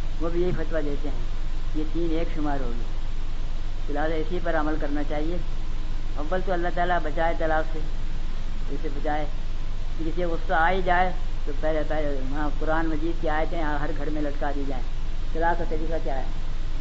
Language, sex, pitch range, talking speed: Urdu, female, 140-170 Hz, 180 wpm